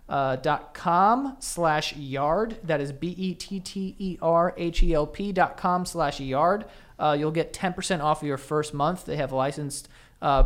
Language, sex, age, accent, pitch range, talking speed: English, male, 30-49, American, 145-175 Hz, 150 wpm